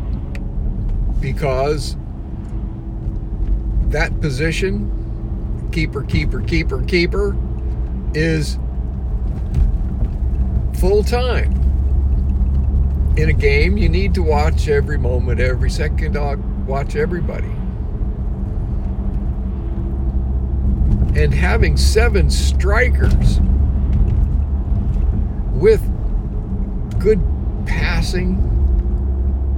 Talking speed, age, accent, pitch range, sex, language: 60 wpm, 60-79, American, 65-70 Hz, male, English